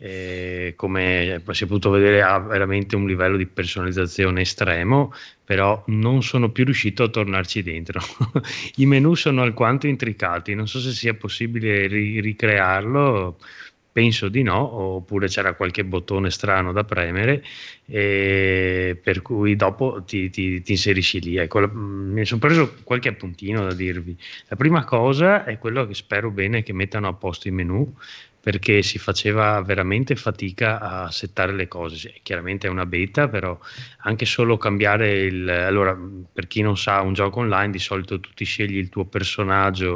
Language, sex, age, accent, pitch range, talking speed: Italian, male, 20-39, native, 95-110 Hz, 165 wpm